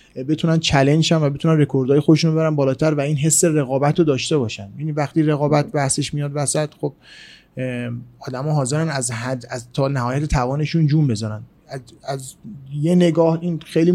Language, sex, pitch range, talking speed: Persian, male, 130-155 Hz, 170 wpm